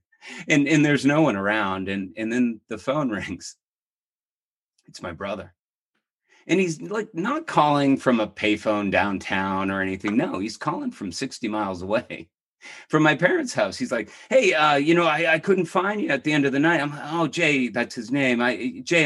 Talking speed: 200 wpm